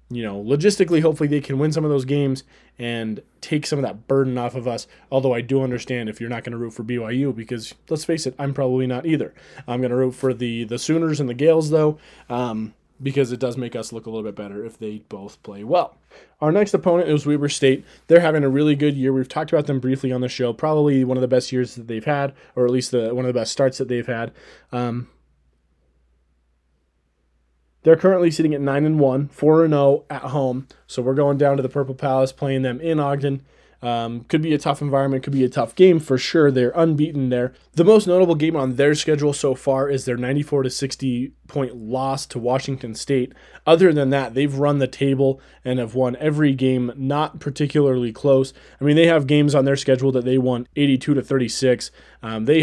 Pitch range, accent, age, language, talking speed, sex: 125-145 Hz, American, 20-39, English, 225 wpm, male